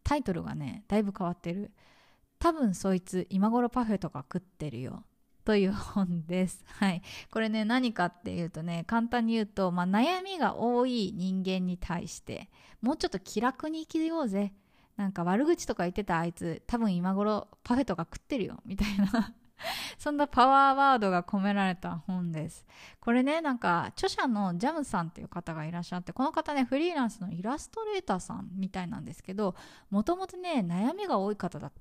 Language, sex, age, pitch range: Japanese, female, 20-39, 185-265 Hz